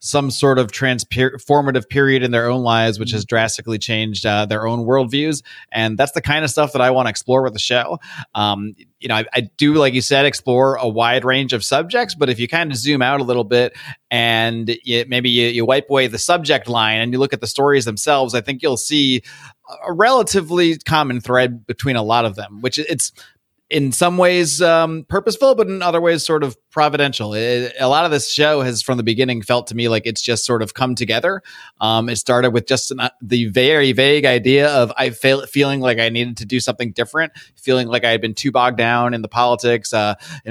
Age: 30-49